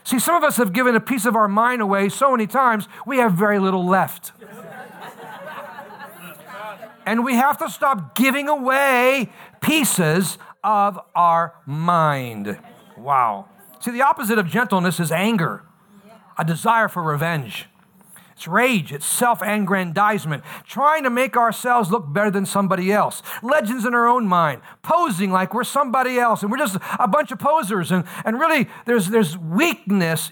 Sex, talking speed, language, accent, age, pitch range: male, 155 wpm, English, American, 50-69, 185-240 Hz